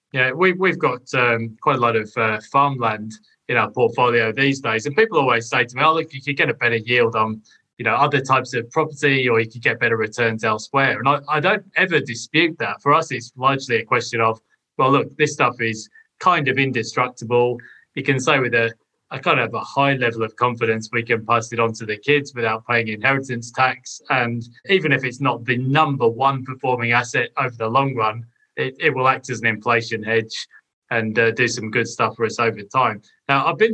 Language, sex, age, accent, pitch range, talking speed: English, male, 20-39, British, 115-140 Hz, 225 wpm